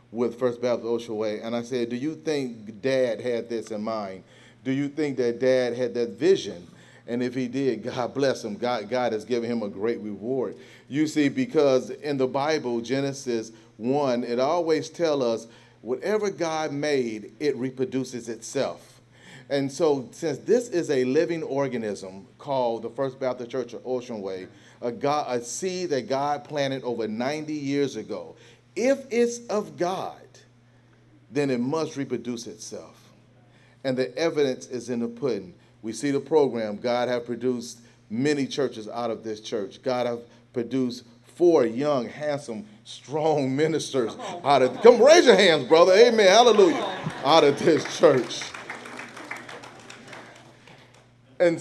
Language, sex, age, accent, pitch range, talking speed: English, male, 40-59, American, 120-145 Hz, 160 wpm